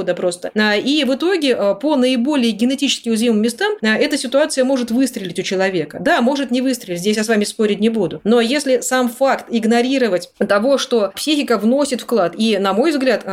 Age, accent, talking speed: 30-49, native, 185 wpm